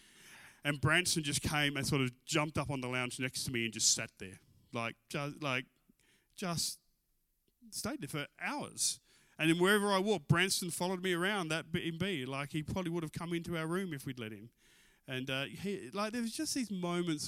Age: 30-49